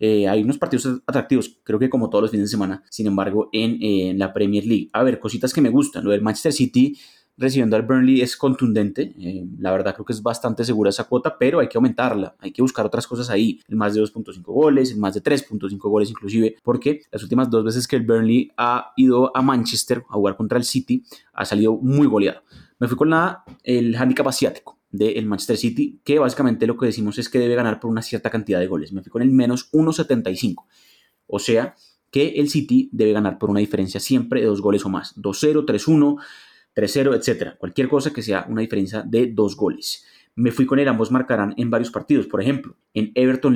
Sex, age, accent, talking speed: male, 20-39, Colombian, 225 wpm